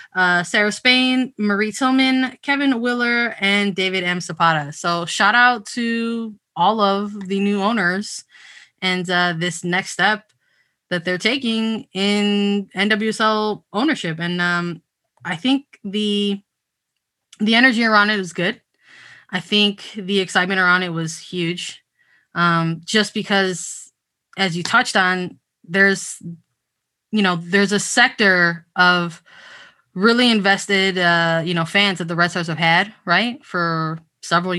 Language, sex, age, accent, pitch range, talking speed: English, female, 20-39, American, 175-215 Hz, 135 wpm